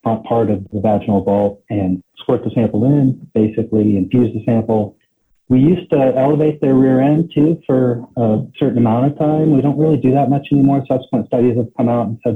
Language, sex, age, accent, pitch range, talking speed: English, male, 40-59, American, 100-125 Hz, 205 wpm